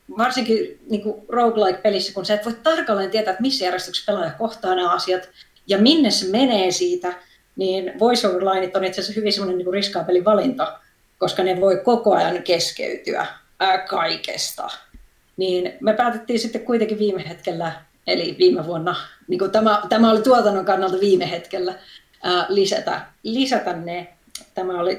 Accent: native